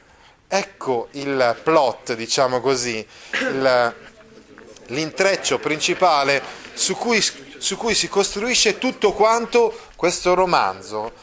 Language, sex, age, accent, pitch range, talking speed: Italian, male, 30-49, native, 115-180 Hz, 95 wpm